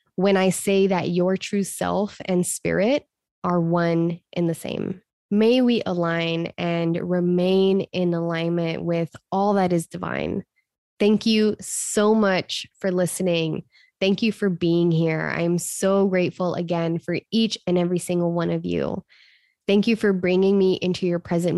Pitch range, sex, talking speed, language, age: 170-195 Hz, female, 160 wpm, English, 20-39